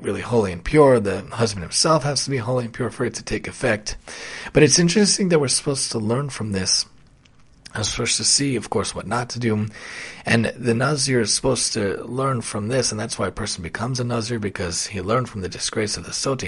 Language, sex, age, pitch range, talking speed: English, male, 30-49, 100-130 Hz, 235 wpm